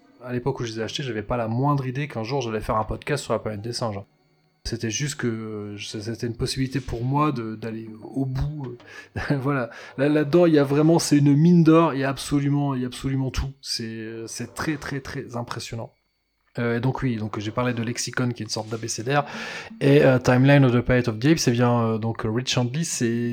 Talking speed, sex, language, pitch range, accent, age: 235 wpm, male, French, 120-160 Hz, French, 20-39